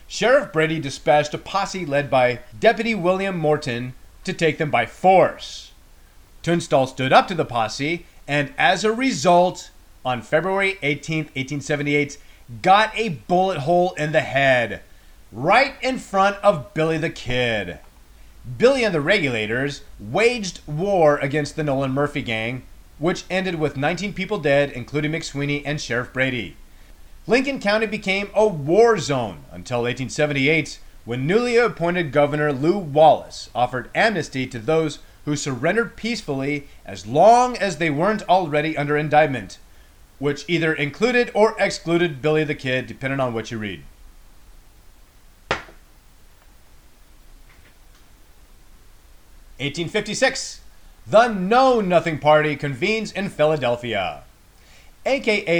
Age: 30-49